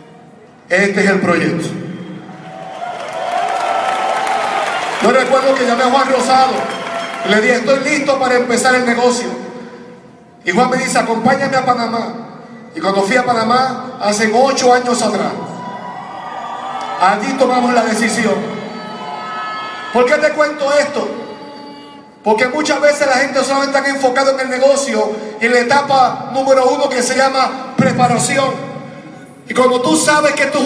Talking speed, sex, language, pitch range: 140 wpm, male, Spanish, 235-280 Hz